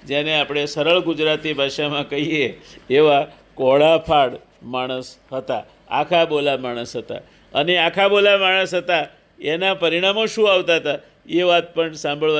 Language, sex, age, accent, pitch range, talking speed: Gujarati, male, 50-69, native, 150-185 Hz, 130 wpm